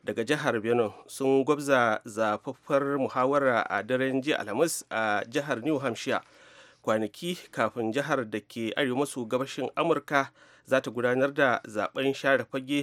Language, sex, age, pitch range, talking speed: English, male, 30-49, 120-150 Hz, 130 wpm